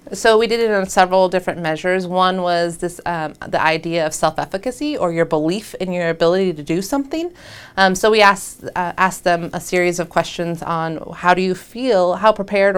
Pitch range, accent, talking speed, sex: 160-185 Hz, American, 200 wpm, female